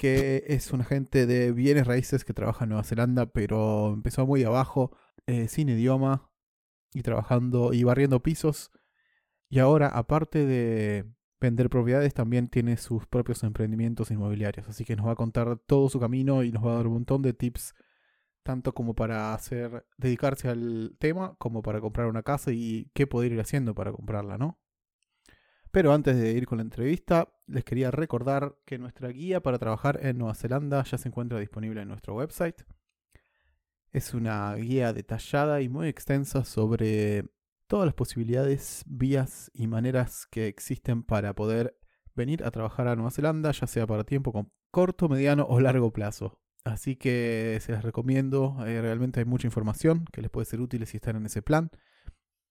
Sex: male